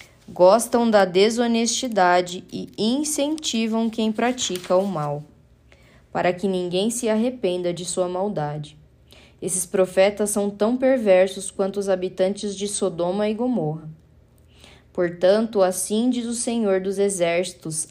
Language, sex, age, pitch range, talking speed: Portuguese, female, 10-29, 175-220 Hz, 120 wpm